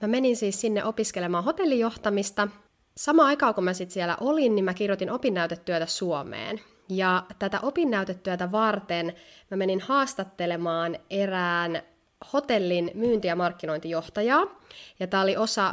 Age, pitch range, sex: 20-39, 170-230 Hz, female